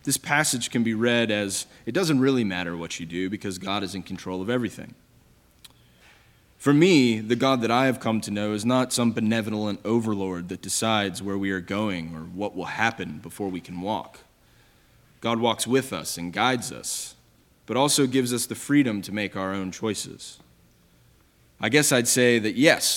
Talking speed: 190 wpm